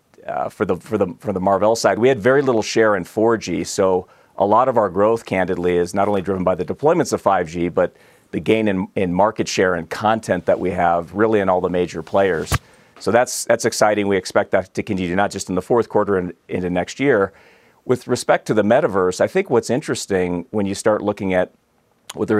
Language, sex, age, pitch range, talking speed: English, male, 40-59, 90-110 Hz, 225 wpm